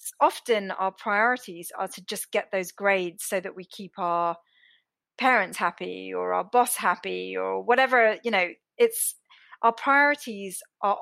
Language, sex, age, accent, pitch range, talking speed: English, female, 20-39, British, 185-235 Hz, 155 wpm